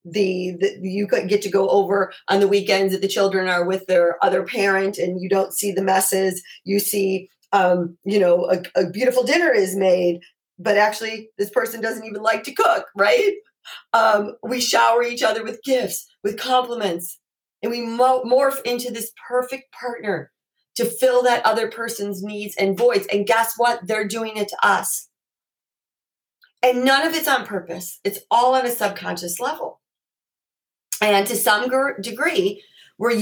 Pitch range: 190-250 Hz